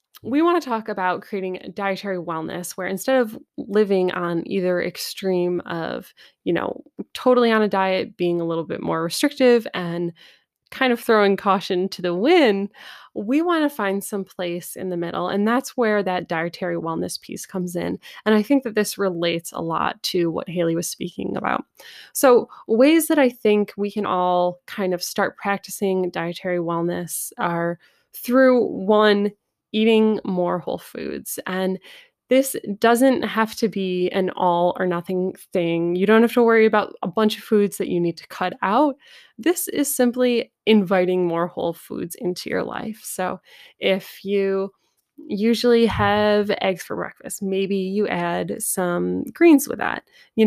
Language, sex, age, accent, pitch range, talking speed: English, female, 20-39, American, 180-230 Hz, 170 wpm